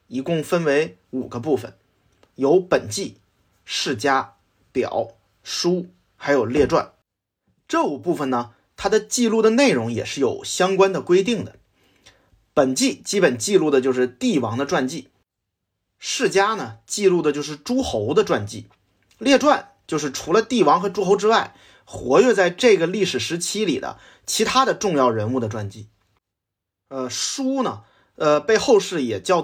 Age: 30-49